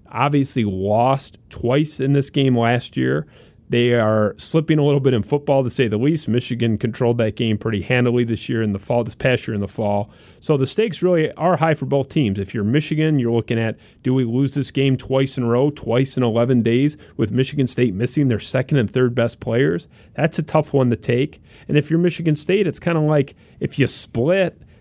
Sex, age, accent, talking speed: male, 30-49, American, 225 wpm